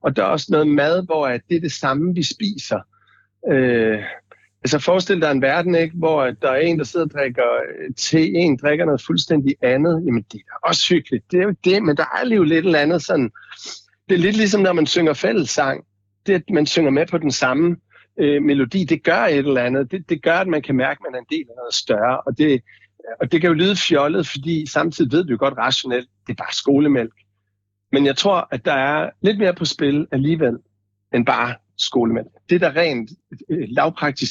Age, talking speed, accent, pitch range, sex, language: 60-79, 220 wpm, native, 130-170 Hz, male, Danish